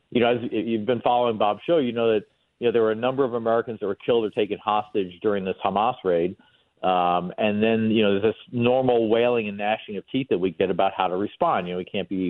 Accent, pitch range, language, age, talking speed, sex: American, 105-135 Hz, English, 50-69, 265 wpm, male